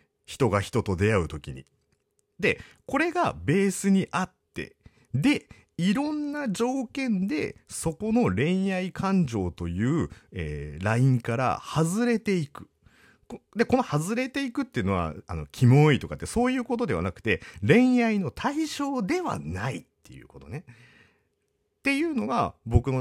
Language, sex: Japanese, male